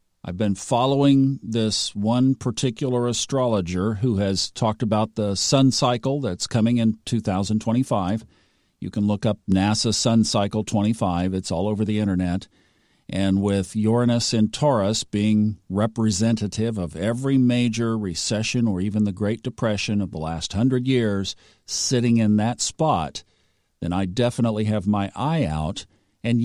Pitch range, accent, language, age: 100-120 Hz, American, English, 50-69